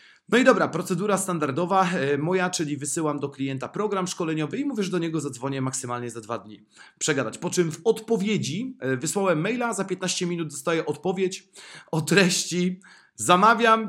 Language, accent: Polish, native